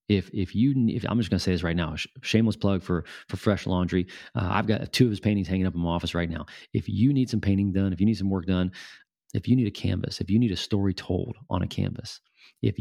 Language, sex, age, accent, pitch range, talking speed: English, male, 30-49, American, 90-110 Hz, 275 wpm